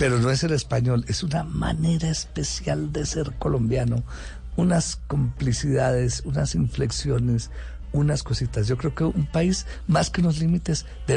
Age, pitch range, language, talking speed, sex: 50-69, 105-130 Hz, Spanish, 150 wpm, male